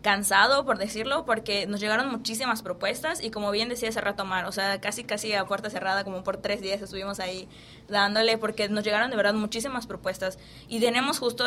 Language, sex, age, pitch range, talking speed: English, female, 20-39, 195-230 Hz, 200 wpm